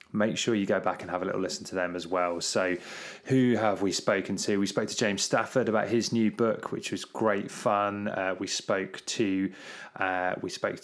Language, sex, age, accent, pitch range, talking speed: English, male, 20-39, British, 95-115 Hz, 220 wpm